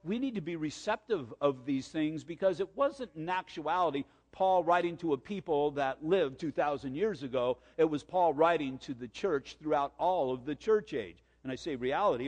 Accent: American